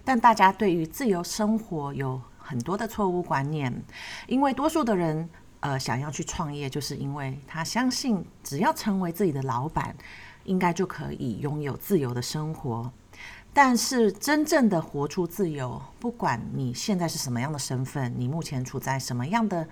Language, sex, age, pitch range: Chinese, female, 40-59, 130-200 Hz